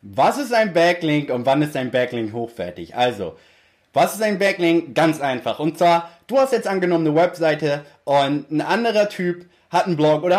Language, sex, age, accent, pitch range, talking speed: German, male, 20-39, German, 140-185 Hz, 190 wpm